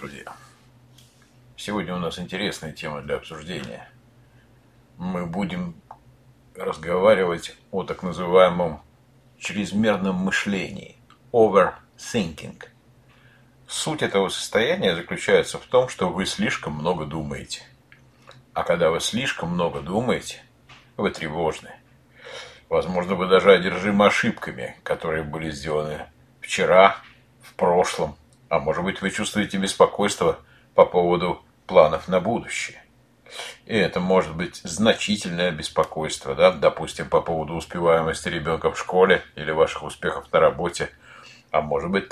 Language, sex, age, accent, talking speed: Russian, male, 50-69, native, 115 wpm